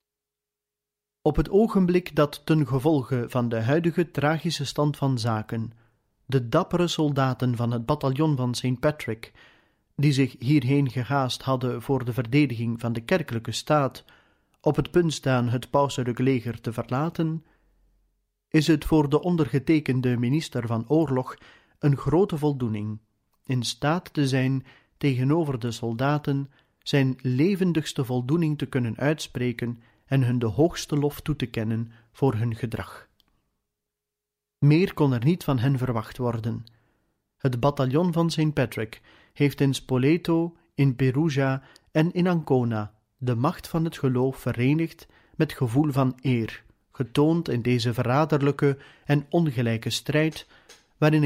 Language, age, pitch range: Dutch, 40-59, 120-150 Hz